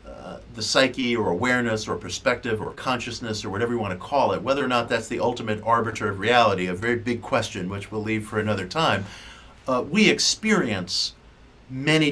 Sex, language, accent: male, English, American